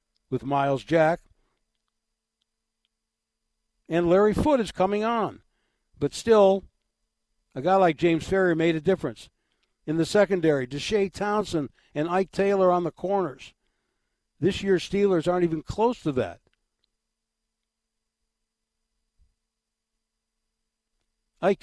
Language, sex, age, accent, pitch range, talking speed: English, male, 60-79, American, 120-180 Hz, 110 wpm